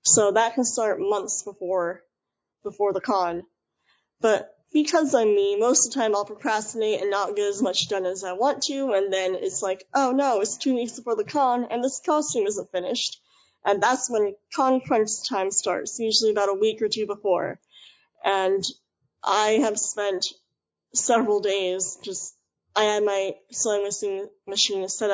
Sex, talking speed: female, 175 wpm